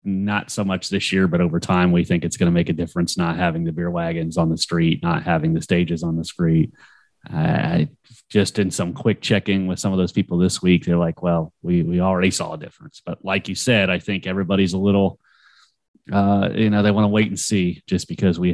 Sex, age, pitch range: male, 30-49, 85-100 Hz